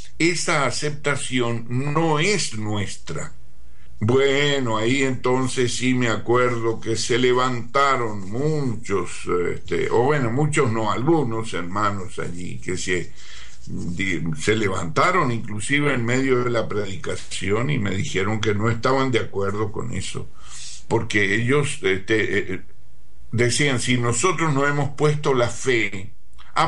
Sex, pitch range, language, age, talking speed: male, 105-135 Hz, Spanish, 60-79, 120 wpm